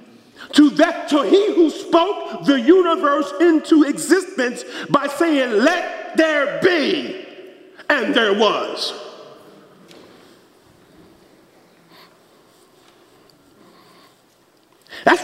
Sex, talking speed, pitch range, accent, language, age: male, 75 wpm, 200-320 Hz, American, English, 50-69